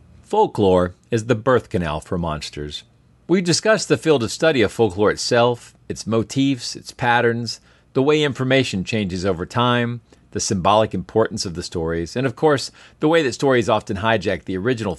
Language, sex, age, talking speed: English, male, 40-59, 170 wpm